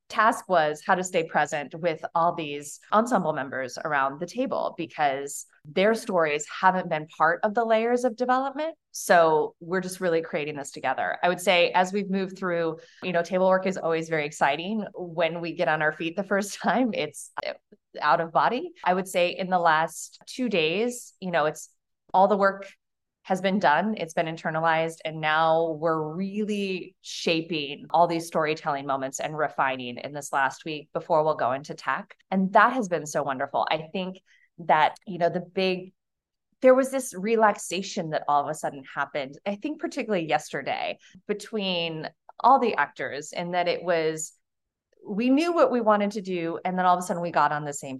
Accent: American